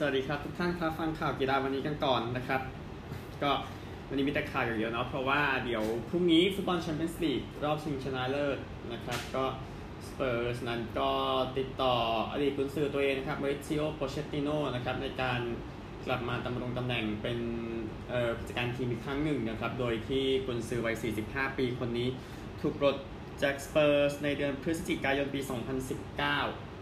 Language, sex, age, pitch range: Thai, male, 20-39, 115-140 Hz